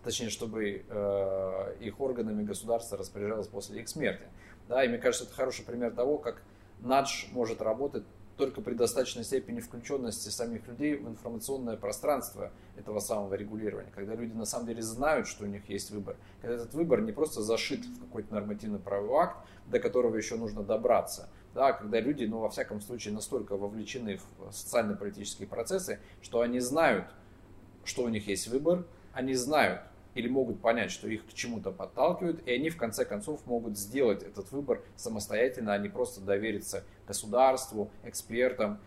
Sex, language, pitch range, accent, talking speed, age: male, Russian, 100-125 Hz, native, 165 wpm, 30-49